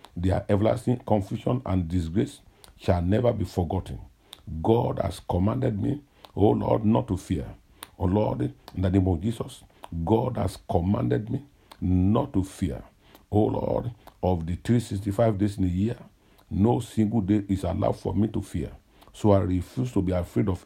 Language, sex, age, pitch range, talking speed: English, male, 50-69, 90-110 Hz, 165 wpm